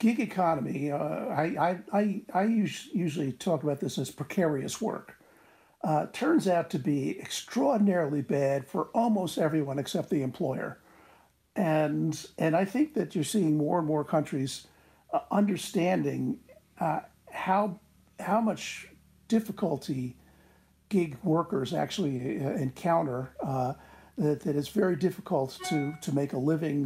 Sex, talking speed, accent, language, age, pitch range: male, 130 wpm, American, English, 60-79, 140-185 Hz